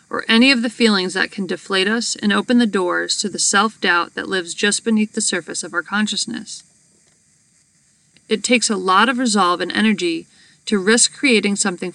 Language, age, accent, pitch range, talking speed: English, 40-59, American, 185-225 Hz, 185 wpm